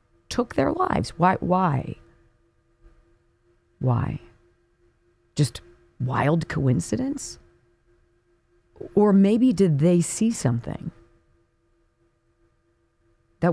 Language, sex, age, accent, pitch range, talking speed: English, female, 40-59, American, 115-180 Hz, 70 wpm